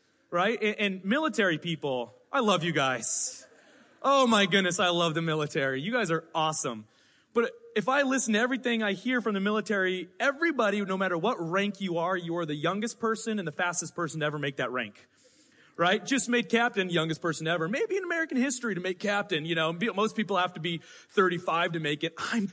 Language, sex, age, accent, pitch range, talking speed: English, male, 30-49, American, 165-215 Hz, 205 wpm